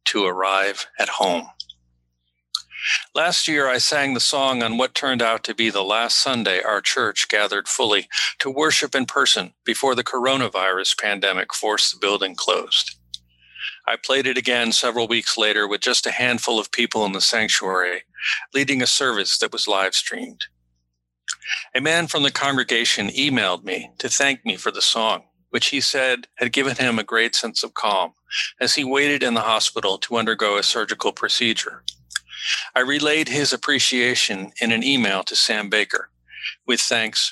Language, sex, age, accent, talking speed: English, male, 50-69, American, 170 wpm